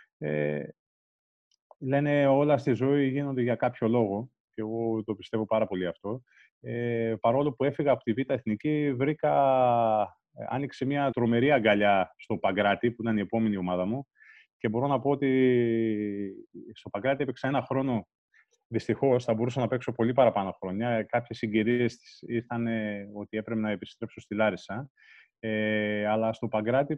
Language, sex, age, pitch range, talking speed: Greek, male, 30-49, 105-120 Hz, 150 wpm